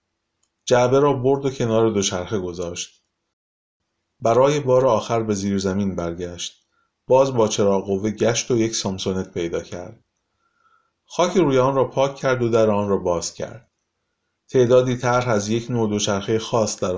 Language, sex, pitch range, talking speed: Persian, male, 100-125 Hz, 155 wpm